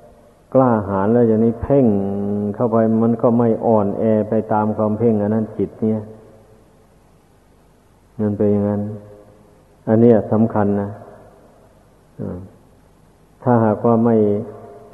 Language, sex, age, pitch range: Thai, male, 60-79, 105-115 Hz